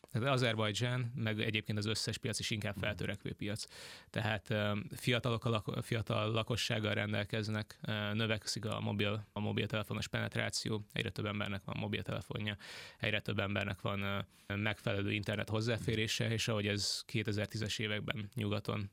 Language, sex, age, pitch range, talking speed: Hungarian, male, 20-39, 105-115 Hz, 135 wpm